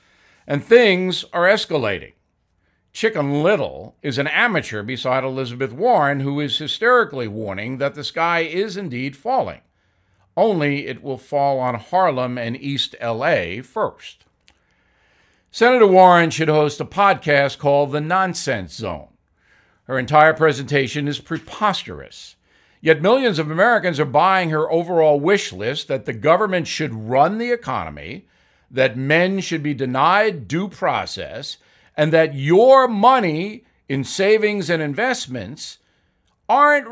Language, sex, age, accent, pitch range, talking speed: English, male, 60-79, American, 130-185 Hz, 130 wpm